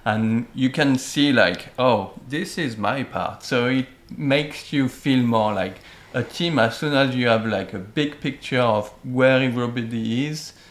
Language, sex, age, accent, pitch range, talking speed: English, male, 40-59, French, 105-125 Hz, 180 wpm